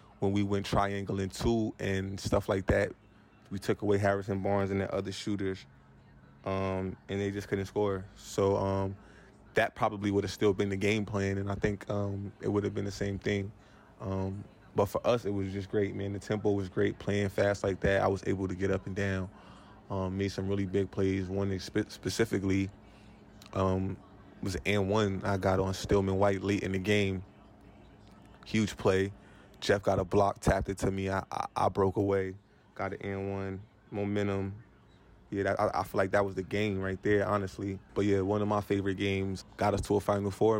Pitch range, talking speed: 95-100 Hz, 205 wpm